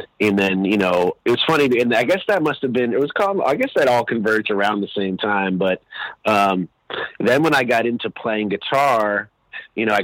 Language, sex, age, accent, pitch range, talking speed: English, male, 30-49, American, 95-115 Hz, 220 wpm